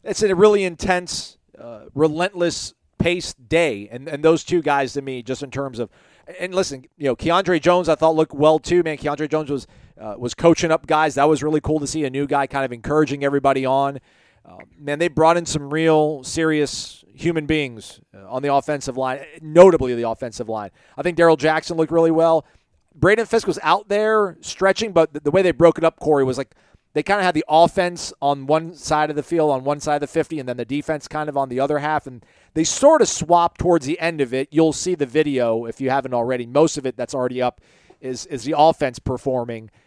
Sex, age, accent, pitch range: male, 40-59, American, 130-165 Hz